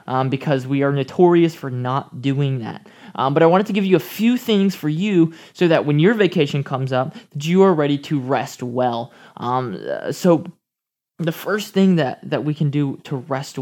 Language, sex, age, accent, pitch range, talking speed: English, male, 20-39, American, 135-170 Hz, 210 wpm